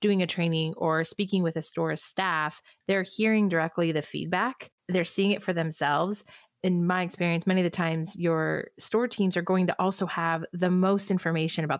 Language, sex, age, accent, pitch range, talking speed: English, female, 30-49, American, 160-195 Hz, 195 wpm